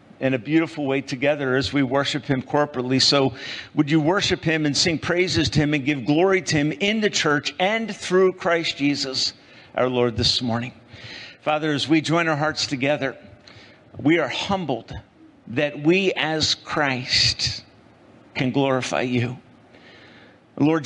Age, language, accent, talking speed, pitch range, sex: 50-69, English, American, 155 wpm, 130-155 Hz, male